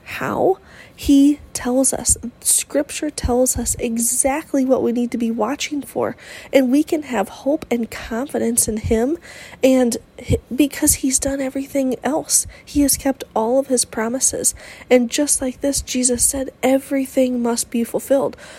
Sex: female